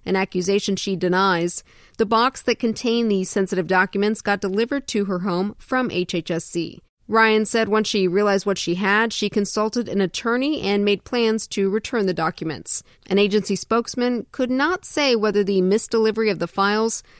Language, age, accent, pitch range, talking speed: English, 40-59, American, 190-225 Hz, 170 wpm